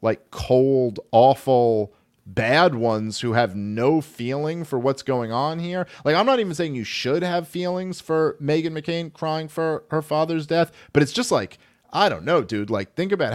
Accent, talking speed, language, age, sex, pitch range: American, 190 wpm, English, 40-59, male, 120-165 Hz